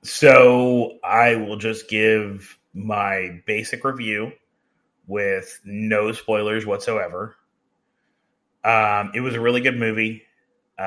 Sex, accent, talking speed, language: male, American, 105 wpm, English